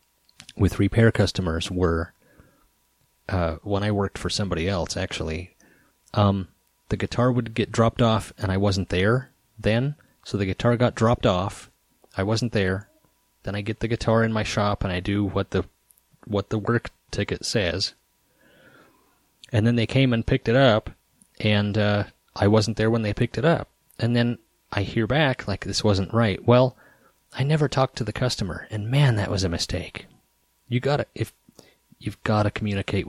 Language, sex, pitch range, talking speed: English, male, 100-125 Hz, 180 wpm